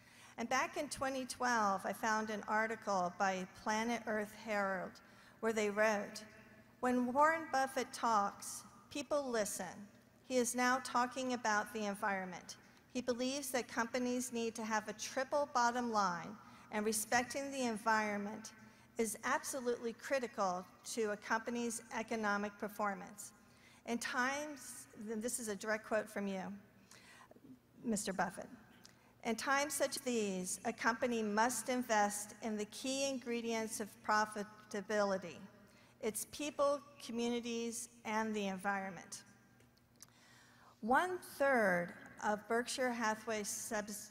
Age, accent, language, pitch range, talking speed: 50-69, American, English, 210-245 Hz, 120 wpm